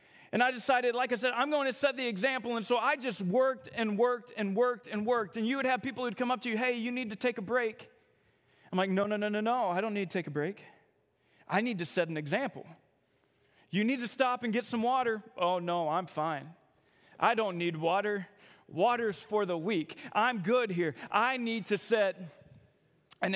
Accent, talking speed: American, 225 wpm